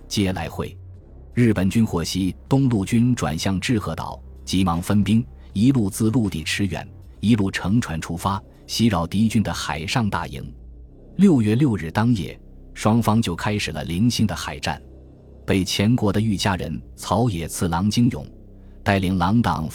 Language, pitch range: Chinese, 80-110 Hz